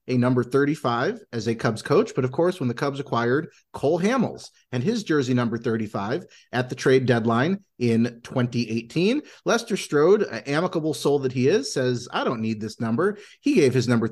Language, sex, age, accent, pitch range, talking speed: English, male, 30-49, American, 115-155 Hz, 190 wpm